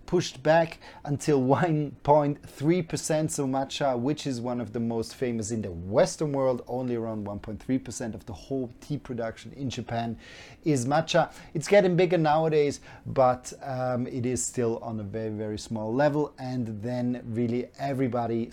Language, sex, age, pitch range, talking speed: English, male, 30-49, 115-145 Hz, 155 wpm